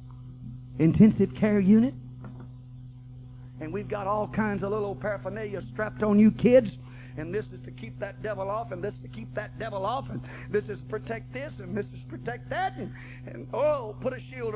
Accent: American